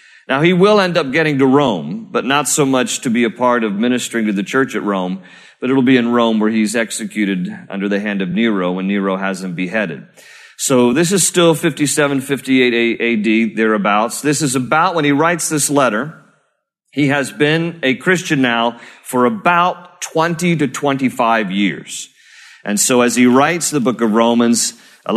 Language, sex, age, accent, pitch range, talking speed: English, male, 40-59, American, 115-160 Hz, 190 wpm